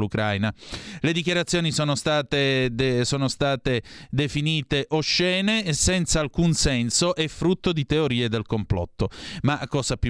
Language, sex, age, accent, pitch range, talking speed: Italian, male, 30-49, native, 115-155 Hz, 130 wpm